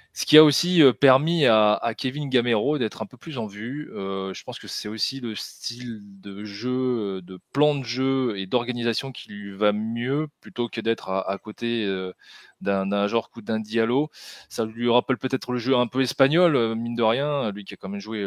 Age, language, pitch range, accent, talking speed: 20-39, French, 100-130 Hz, French, 215 wpm